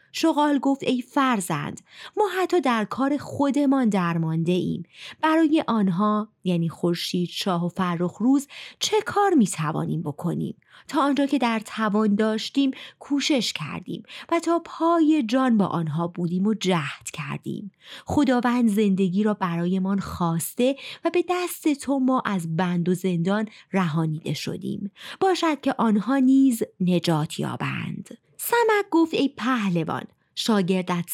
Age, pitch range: 30-49, 180-280 Hz